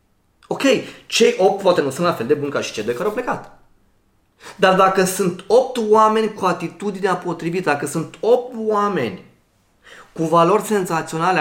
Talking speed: 170 wpm